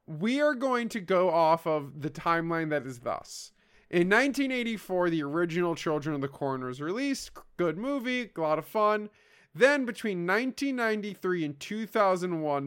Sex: male